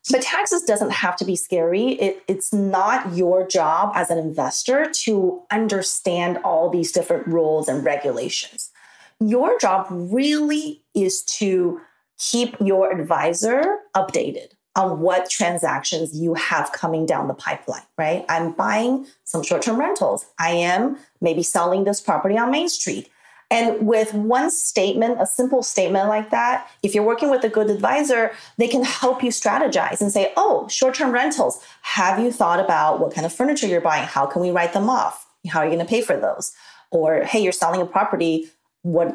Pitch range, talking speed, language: 170-235 Hz, 170 wpm, English